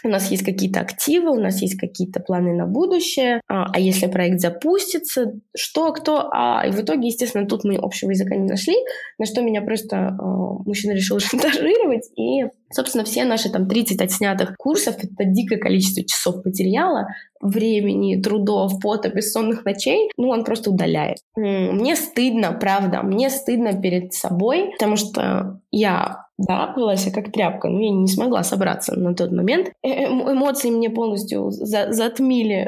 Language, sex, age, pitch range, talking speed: Russian, female, 20-39, 195-245 Hz, 155 wpm